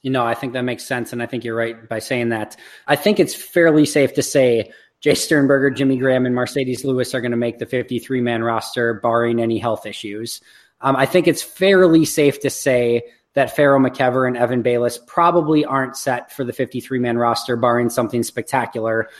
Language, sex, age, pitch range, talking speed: English, male, 20-39, 120-145 Hz, 200 wpm